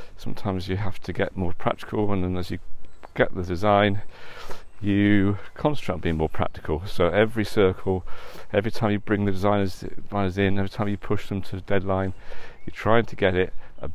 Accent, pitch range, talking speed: British, 90-105 Hz, 195 wpm